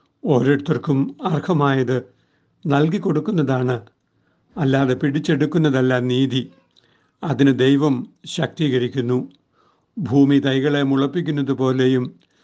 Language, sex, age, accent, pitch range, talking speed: Malayalam, male, 60-79, native, 130-150 Hz, 65 wpm